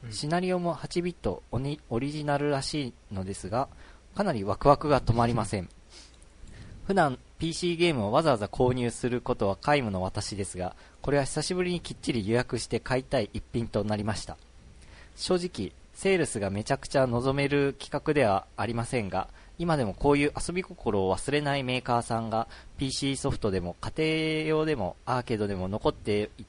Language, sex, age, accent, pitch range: Japanese, male, 40-59, native, 105-145 Hz